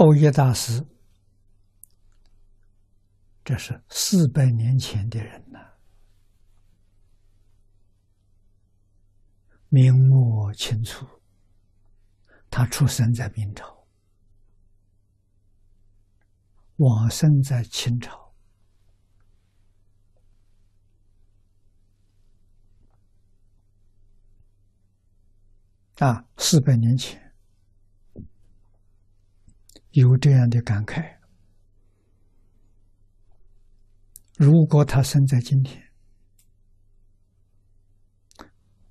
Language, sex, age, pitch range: Chinese, male, 60-79, 100-110 Hz